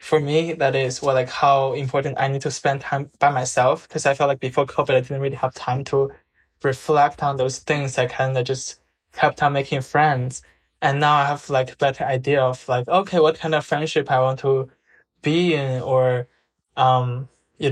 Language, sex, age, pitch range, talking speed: English, male, 10-29, 130-150 Hz, 210 wpm